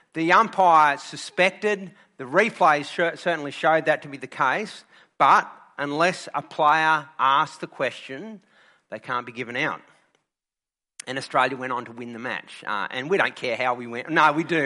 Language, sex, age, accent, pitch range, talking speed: English, male, 40-59, Australian, 140-180 Hz, 175 wpm